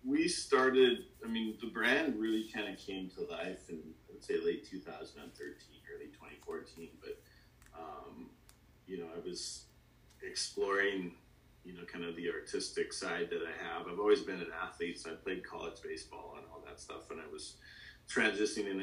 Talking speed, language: 175 wpm, English